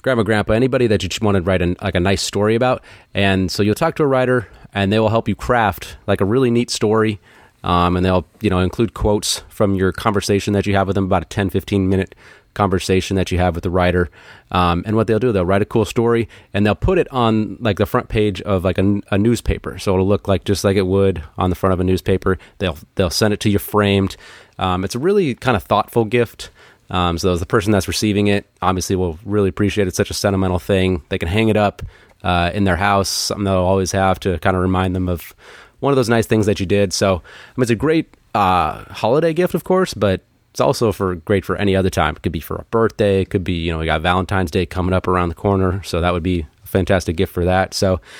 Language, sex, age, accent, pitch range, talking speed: English, male, 30-49, American, 95-110 Hz, 260 wpm